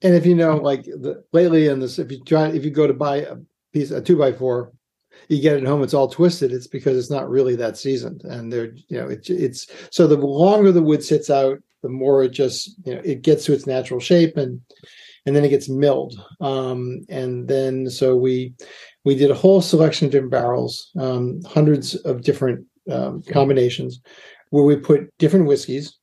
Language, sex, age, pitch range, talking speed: English, male, 50-69, 130-155 Hz, 215 wpm